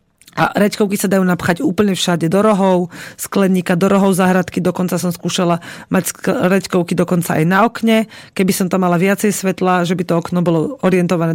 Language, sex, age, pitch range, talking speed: Slovak, female, 40-59, 170-195 Hz, 180 wpm